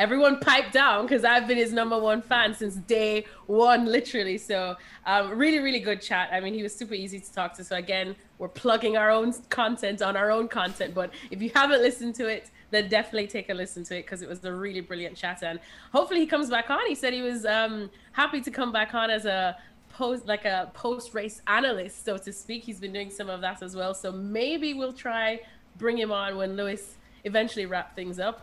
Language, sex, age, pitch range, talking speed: English, female, 20-39, 195-245 Hz, 230 wpm